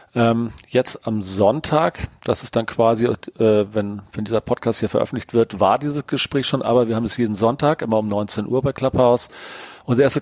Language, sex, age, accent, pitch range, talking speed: German, male, 40-59, German, 105-125 Hz, 195 wpm